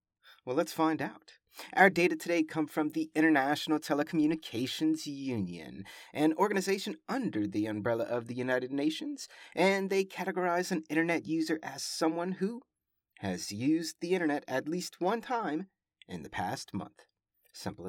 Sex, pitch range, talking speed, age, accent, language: male, 120-170 Hz, 150 wpm, 30-49, American, English